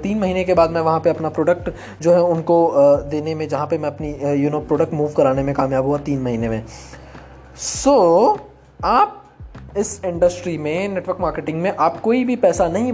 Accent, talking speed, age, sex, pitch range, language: native, 210 wpm, 20-39, male, 145-200 Hz, Hindi